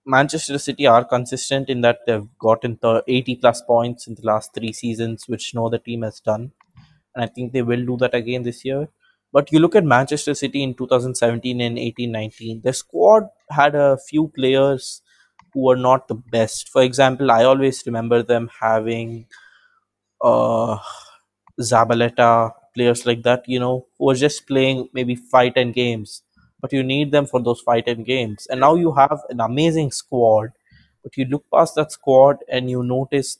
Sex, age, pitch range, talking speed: male, 20-39, 115-135 Hz, 180 wpm